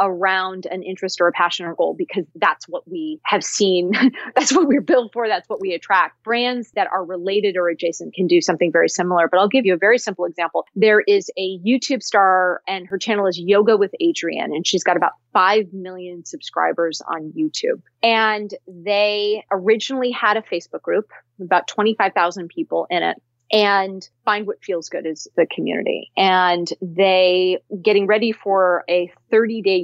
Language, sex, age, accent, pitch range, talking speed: English, female, 30-49, American, 175-220 Hz, 180 wpm